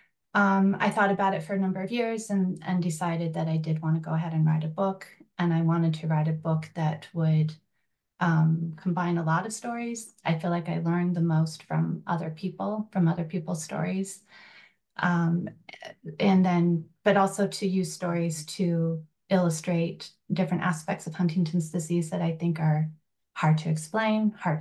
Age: 30-49